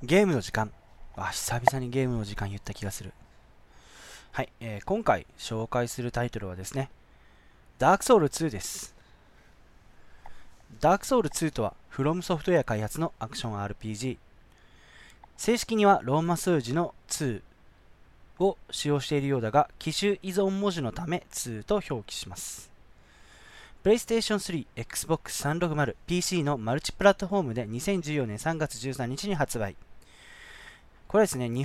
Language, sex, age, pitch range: Japanese, male, 20-39, 105-170 Hz